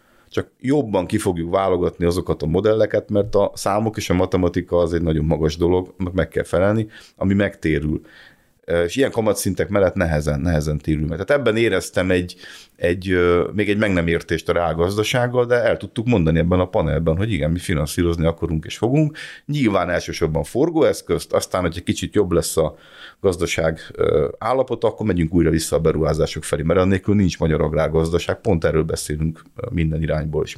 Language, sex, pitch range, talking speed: Hungarian, male, 80-105 Hz, 175 wpm